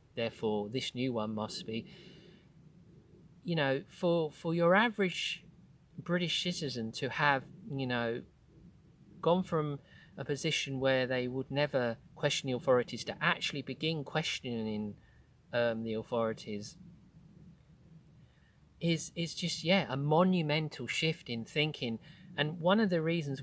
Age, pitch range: 40-59, 120-160 Hz